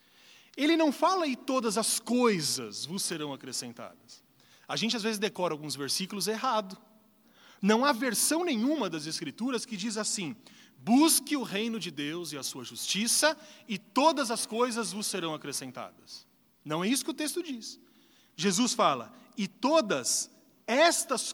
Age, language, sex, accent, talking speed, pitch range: 30-49, Portuguese, male, Brazilian, 155 wpm, 180-275 Hz